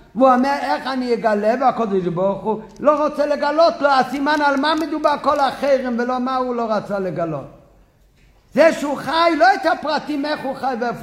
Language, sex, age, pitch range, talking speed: Hebrew, male, 50-69, 215-275 Hz, 185 wpm